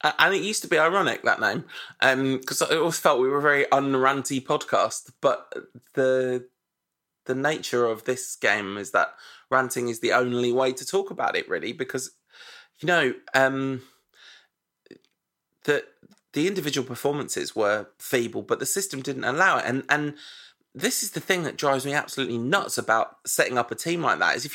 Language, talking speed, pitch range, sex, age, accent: English, 180 wpm, 130-205 Hz, male, 20-39, British